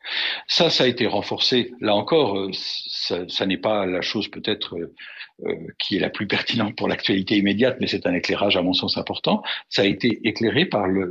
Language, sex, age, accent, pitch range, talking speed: French, male, 60-79, French, 100-145 Hz, 200 wpm